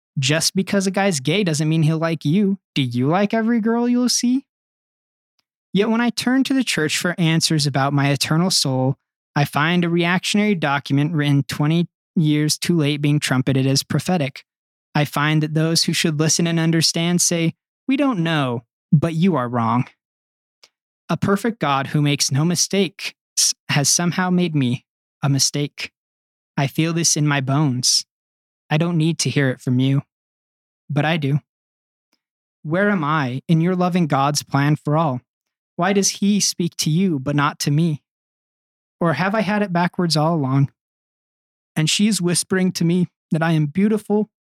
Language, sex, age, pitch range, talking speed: English, male, 20-39, 145-185 Hz, 175 wpm